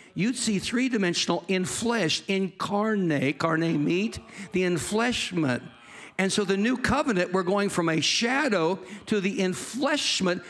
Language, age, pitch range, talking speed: English, 60-79, 145-220 Hz, 130 wpm